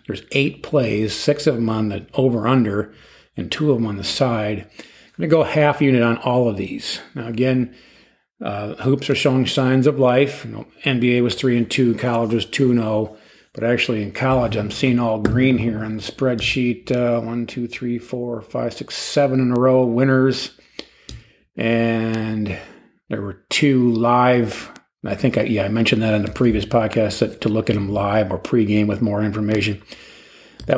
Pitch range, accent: 110-130 Hz, American